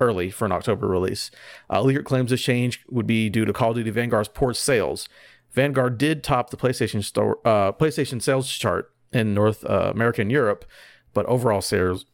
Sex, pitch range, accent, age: male, 105-135 Hz, American, 30-49